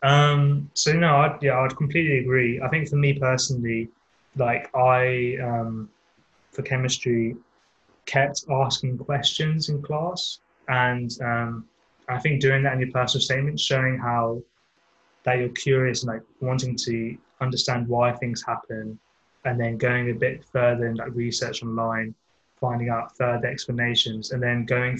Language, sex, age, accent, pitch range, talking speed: English, male, 20-39, British, 115-130 Hz, 150 wpm